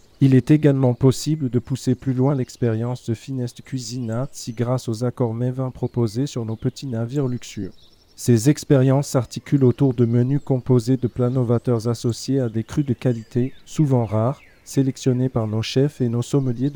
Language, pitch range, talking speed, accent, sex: French, 120-135 Hz, 170 wpm, French, male